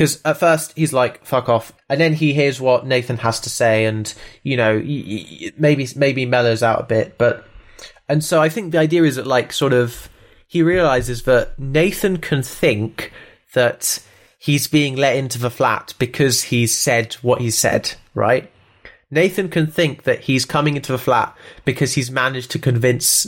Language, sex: English, male